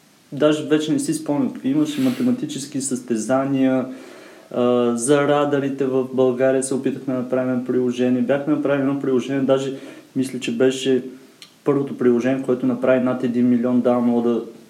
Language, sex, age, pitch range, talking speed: Bulgarian, male, 30-49, 115-135 Hz, 145 wpm